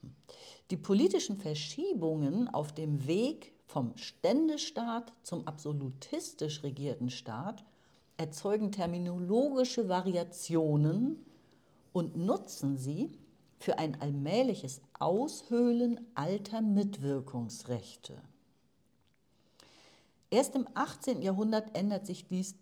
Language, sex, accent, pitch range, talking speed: German, female, German, 145-210 Hz, 80 wpm